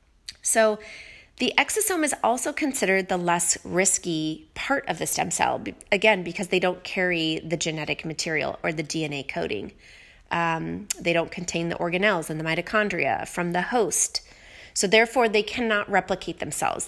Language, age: English, 30-49